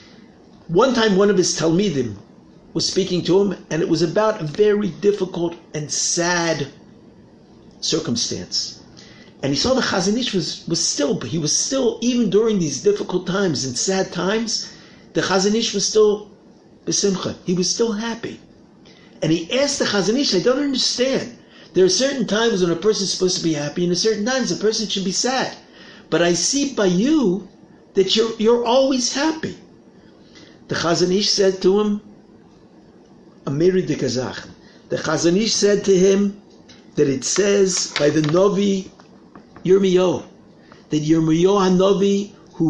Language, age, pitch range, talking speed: English, 50-69, 175-225 Hz, 155 wpm